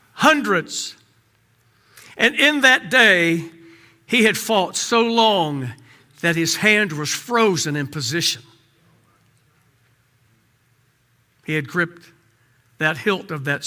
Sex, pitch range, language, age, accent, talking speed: male, 145-225 Hz, English, 60-79, American, 105 wpm